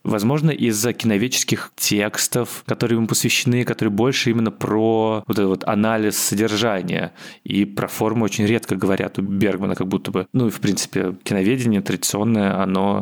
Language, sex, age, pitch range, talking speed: Russian, male, 20-39, 95-115 Hz, 155 wpm